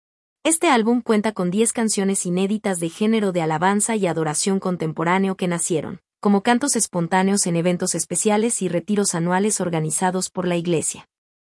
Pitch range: 180-220 Hz